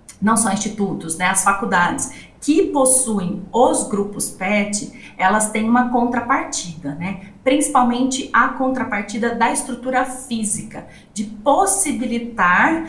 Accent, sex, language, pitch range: Brazilian, female, Portuguese, 200-255 Hz